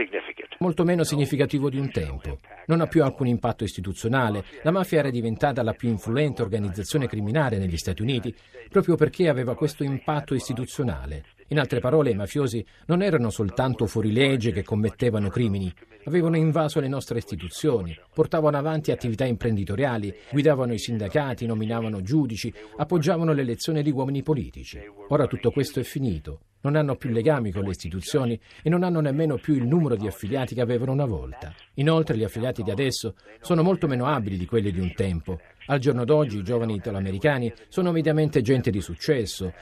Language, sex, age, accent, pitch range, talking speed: Italian, male, 50-69, native, 105-150 Hz, 170 wpm